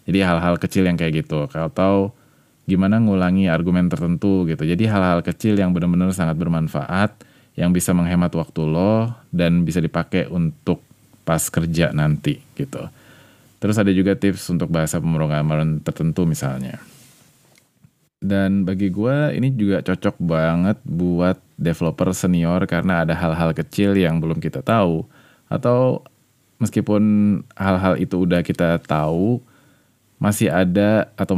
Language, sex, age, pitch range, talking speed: Indonesian, male, 20-39, 85-105 Hz, 130 wpm